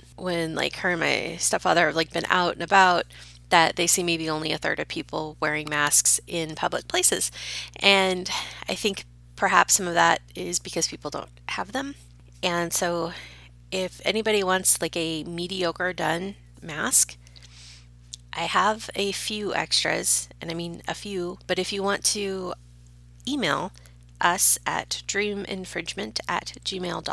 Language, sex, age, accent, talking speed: English, female, 30-49, American, 150 wpm